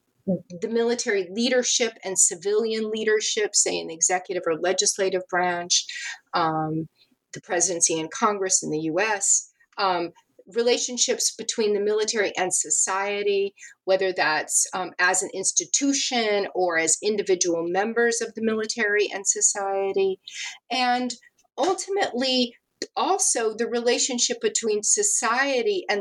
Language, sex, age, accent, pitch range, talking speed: English, female, 40-59, American, 190-250 Hz, 120 wpm